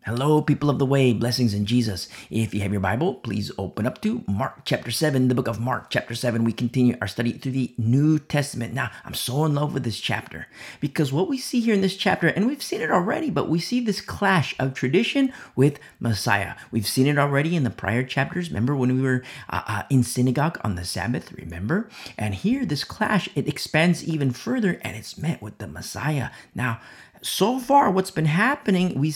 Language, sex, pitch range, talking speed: English, male, 110-155 Hz, 215 wpm